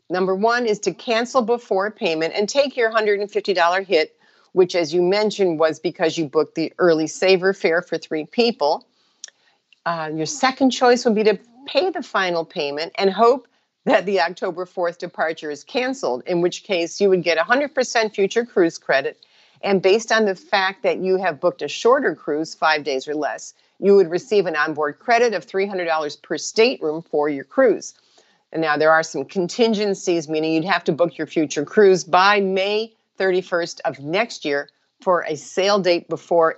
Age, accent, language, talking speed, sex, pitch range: 50-69, American, English, 180 wpm, female, 165-215 Hz